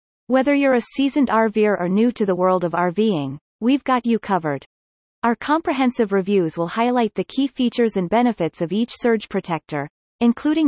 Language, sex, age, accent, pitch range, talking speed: English, female, 30-49, American, 180-245 Hz, 175 wpm